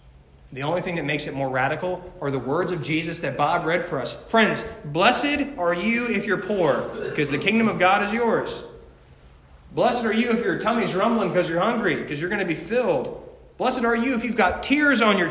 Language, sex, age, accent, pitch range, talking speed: English, male, 30-49, American, 130-190 Hz, 225 wpm